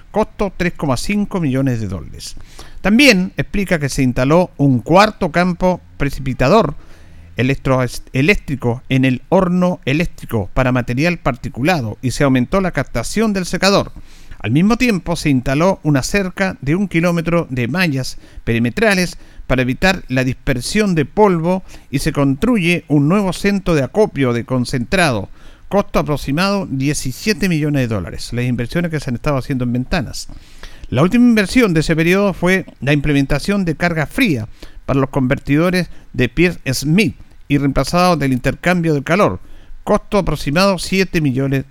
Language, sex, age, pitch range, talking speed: Spanish, male, 50-69, 130-185 Hz, 145 wpm